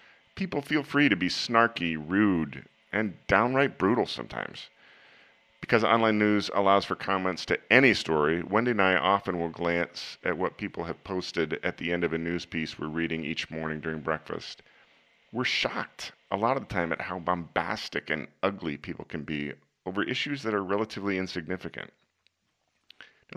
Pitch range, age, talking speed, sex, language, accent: 85-105 Hz, 40-59, 170 wpm, male, English, American